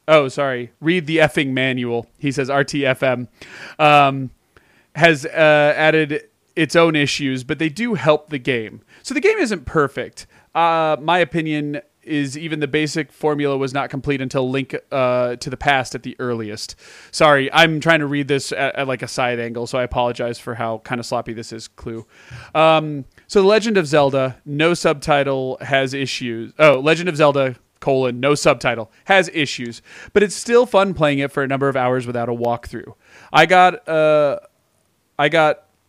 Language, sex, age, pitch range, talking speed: English, male, 30-49, 130-160 Hz, 175 wpm